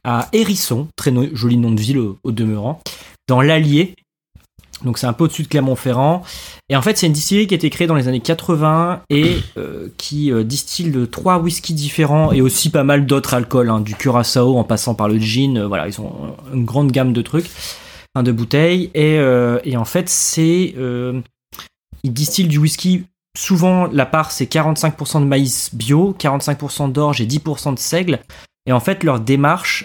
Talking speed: 190 wpm